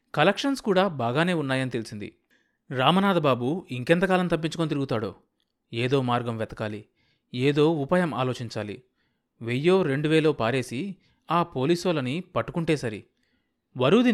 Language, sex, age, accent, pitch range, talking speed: Telugu, male, 30-49, native, 125-175 Hz, 100 wpm